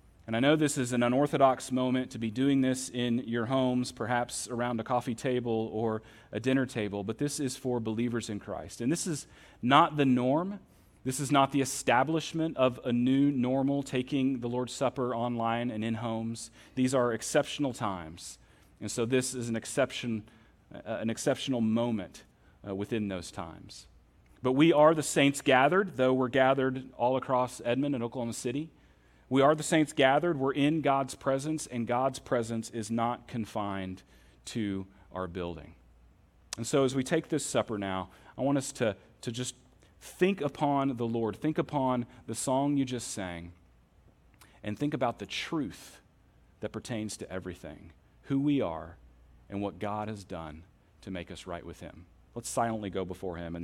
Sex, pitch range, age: male, 105-135 Hz, 40-59